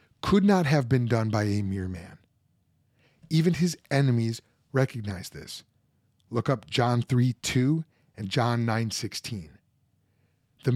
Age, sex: 30-49, male